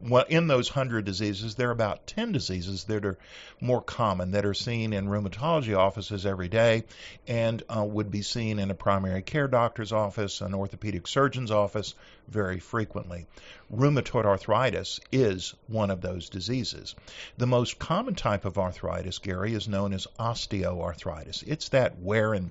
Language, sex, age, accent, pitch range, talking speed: English, male, 50-69, American, 95-115 Hz, 165 wpm